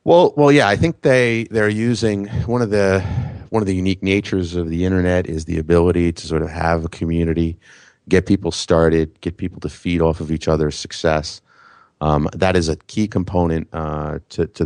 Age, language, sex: 30-49, English, male